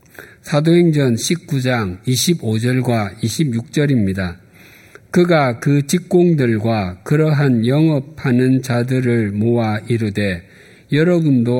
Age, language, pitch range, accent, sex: 50-69, Korean, 115-155 Hz, native, male